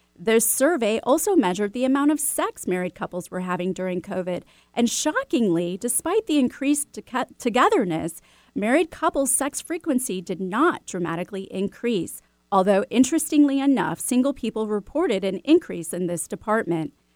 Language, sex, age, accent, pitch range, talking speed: English, female, 30-49, American, 185-275 Hz, 135 wpm